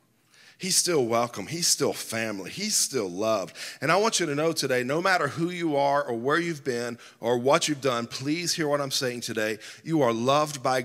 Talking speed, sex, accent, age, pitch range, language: 215 wpm, male, American, 40-59, 135-185 Hz, English